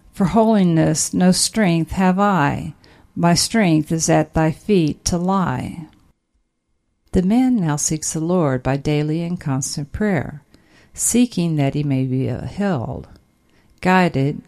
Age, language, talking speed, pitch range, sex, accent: 50-69, English, 135 wpm, 140-185 Hz, female, American